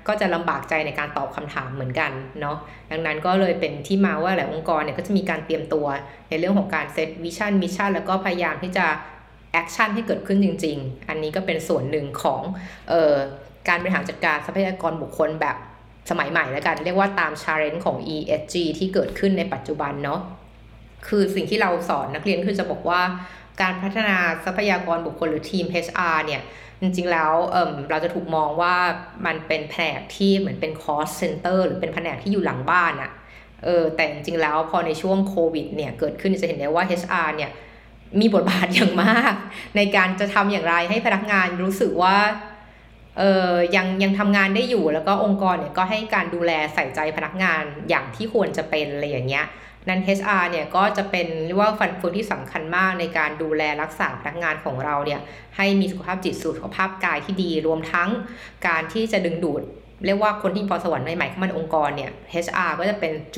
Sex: female